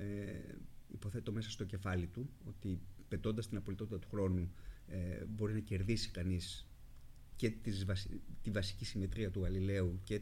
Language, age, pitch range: Greek, 30-49, 95-120 Hz